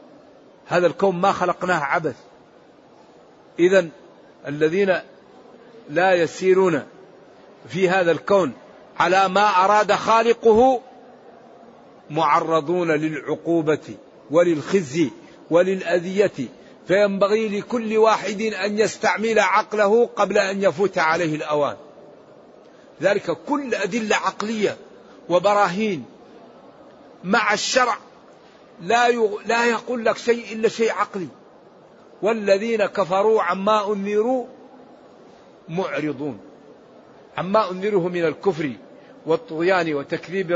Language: Arabic